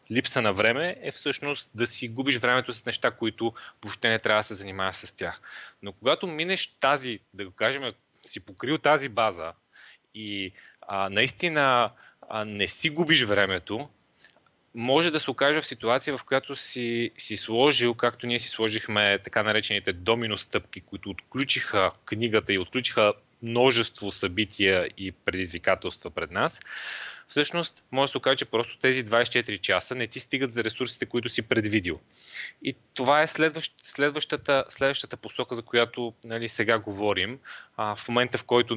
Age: 30-49